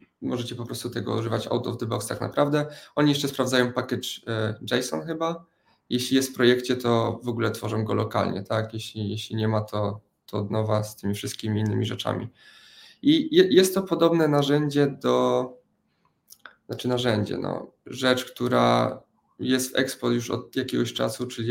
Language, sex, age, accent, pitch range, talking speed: Polish, male, 20-39, native, 110-125 Hz, 175 wpm